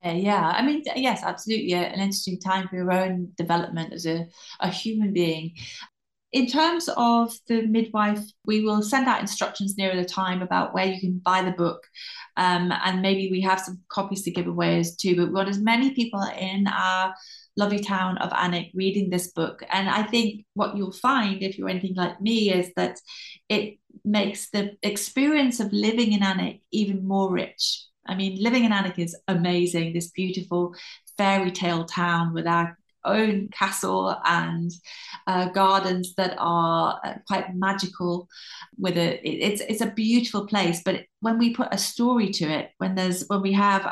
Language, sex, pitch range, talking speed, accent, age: English, female, 180-210 Hz, 180 wpm, British, 30-49